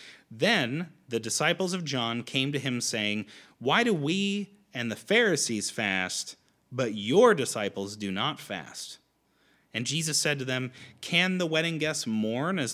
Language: English